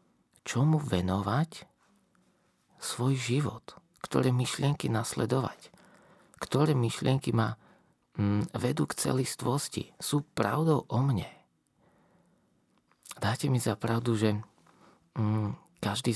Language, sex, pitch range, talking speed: Slovak, male, 110-140 Hz, 95 wpm